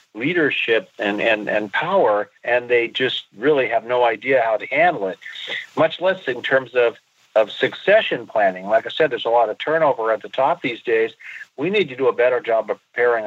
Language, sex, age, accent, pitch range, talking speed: English, male, 50-69, American, 115-190 Hz, 210 wpm